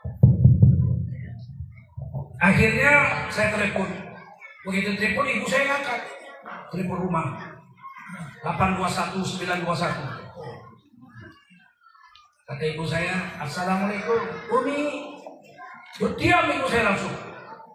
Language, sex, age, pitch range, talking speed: Indonesian, male, 50-69, 145-240 Hz, 70 wpm